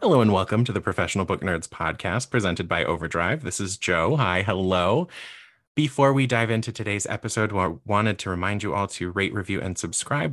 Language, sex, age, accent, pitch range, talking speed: English, male, 30-49, American, 95-120 Hz, 205 wpm